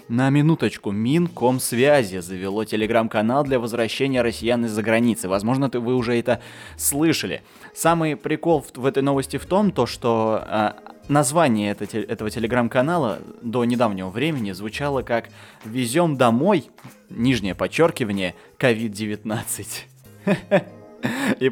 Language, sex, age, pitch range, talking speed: Russian, male, 20-39, 110-135 Hz, 105 wpm